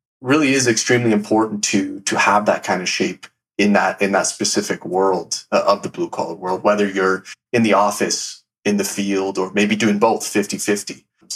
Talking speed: 180 wpm